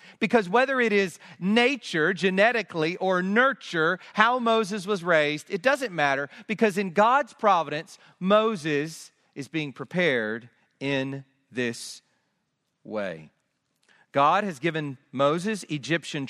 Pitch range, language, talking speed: 150-225 Hz, English, 115 wpm